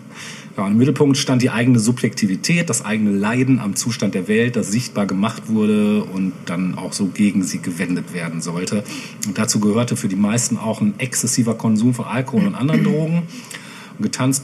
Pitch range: 110-135 Hz